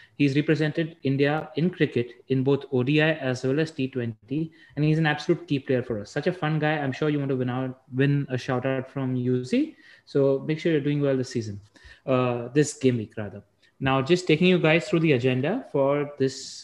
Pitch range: 125-155 Hz